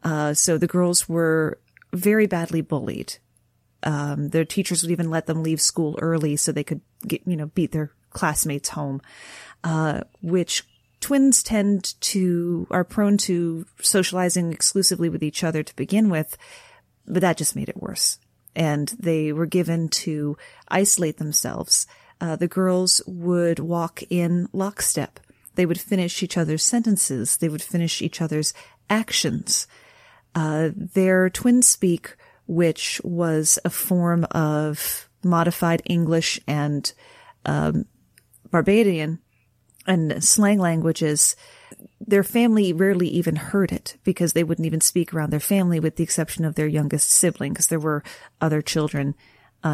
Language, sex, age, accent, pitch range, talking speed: English, female, 30-49, American, 155-185 Hz, 145 wpm